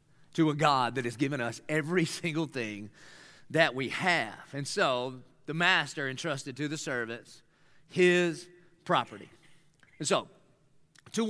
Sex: male